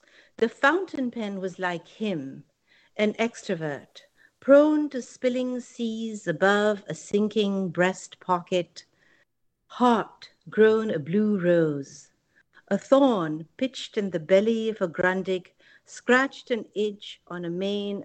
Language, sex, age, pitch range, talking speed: English, female, 60-79, 165-215 Hz, 125 wpm